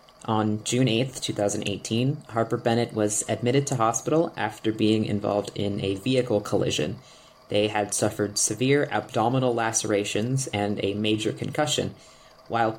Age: 20-39